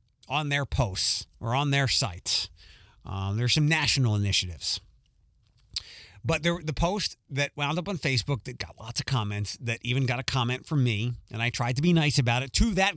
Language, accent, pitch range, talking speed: English, American, 115-155 Hz, 195 wpm